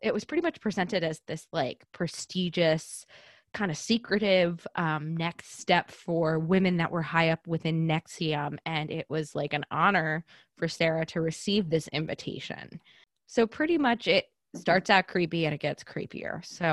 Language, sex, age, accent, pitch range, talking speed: English, female, 20-39, American, 160-185 Hz, 165 wpm